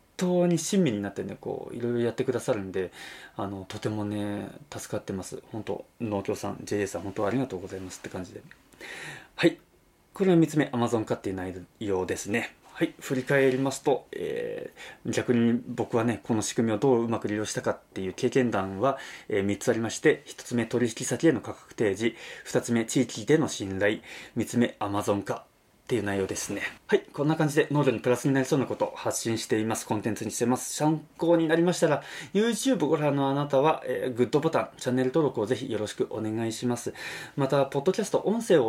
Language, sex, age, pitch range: Japanese, male, 20-39, 105-155 Hz